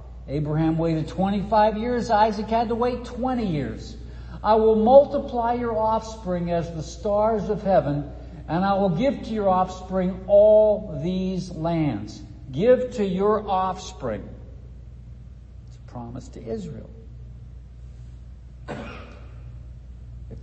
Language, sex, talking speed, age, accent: English, male, 120 wpm, 60-79, American